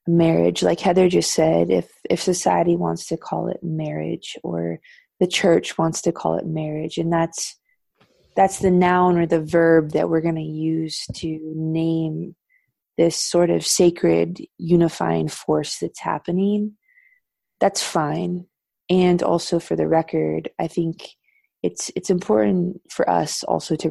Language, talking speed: English, 150 wpm